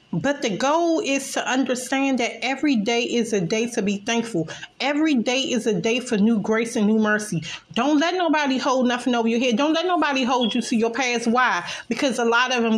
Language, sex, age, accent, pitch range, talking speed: English, female, 30-49, American, 235-305 Hz, 225 wpm